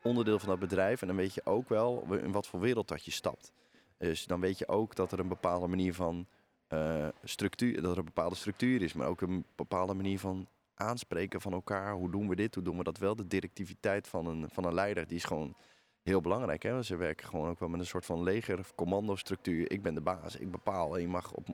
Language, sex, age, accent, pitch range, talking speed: Dutch, male, 20-39, Dutch, 90-100 Hz, 245 wpm